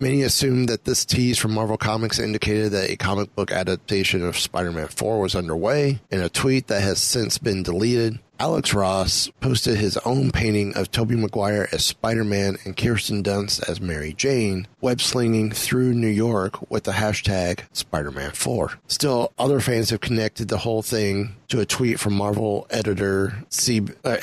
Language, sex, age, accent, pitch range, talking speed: English, male, 30-49, American, 95-115 Hz, 170 wpm